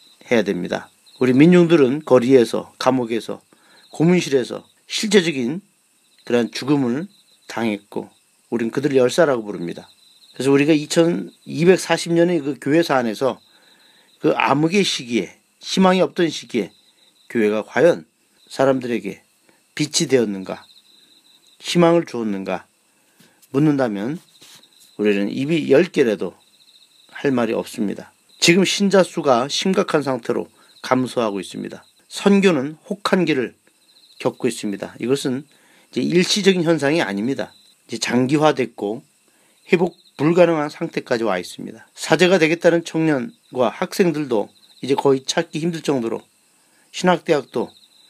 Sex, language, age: male, Korean, 40-59